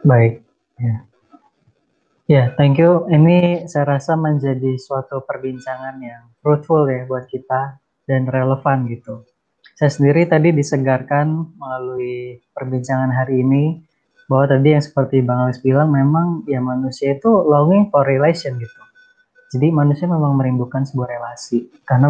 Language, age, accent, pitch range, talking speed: Indonesian, 20-39, native, 130-150 Hz, 135 wpm